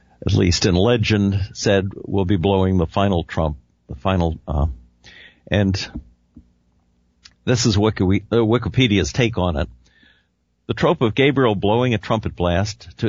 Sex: male